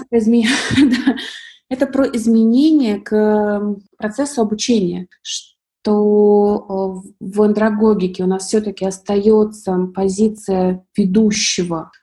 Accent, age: native, 20-39